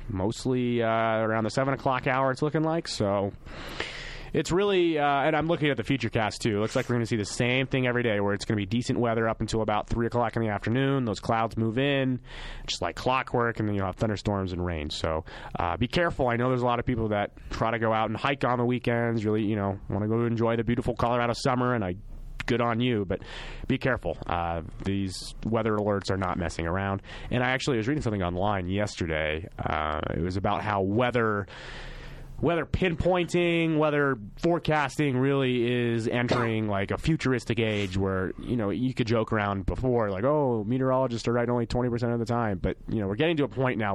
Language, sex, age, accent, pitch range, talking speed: English, male, 30-49, American, 100-125 Hz, 225 wpm